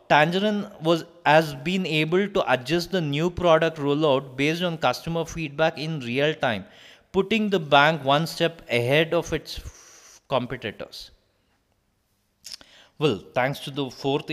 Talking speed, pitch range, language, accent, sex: 140 wpm, 130-175 Hz, English, Indian, male